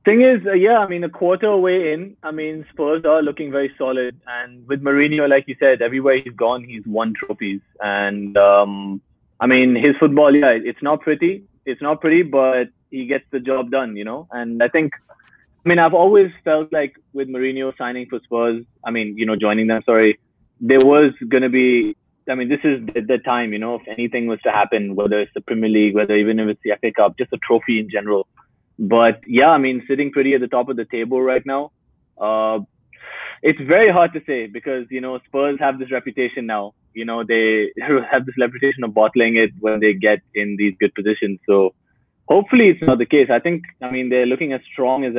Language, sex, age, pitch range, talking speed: English, male, 20-39, 110-140 Hz, 220 wpm